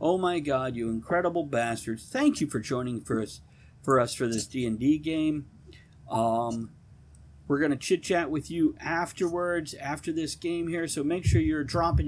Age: 50-69